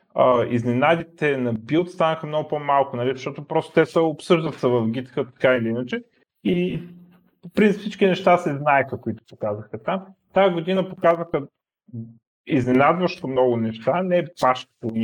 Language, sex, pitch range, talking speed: Bulgarian, male, 115-150 Hz, 145 wpm